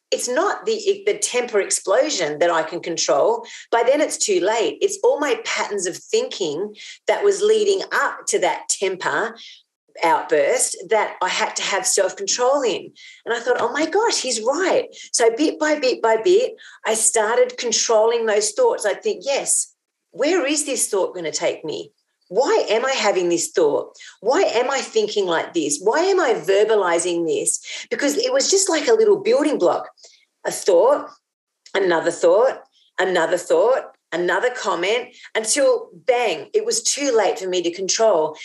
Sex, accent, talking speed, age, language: female, Australian, 170 wpm, 40-59, English